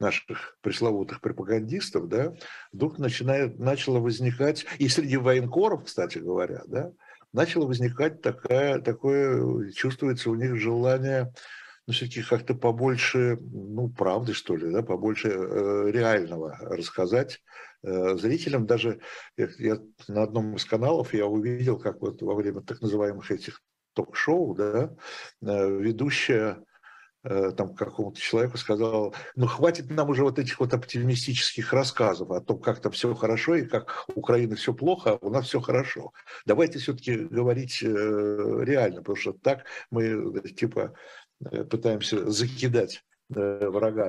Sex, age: male, 60-79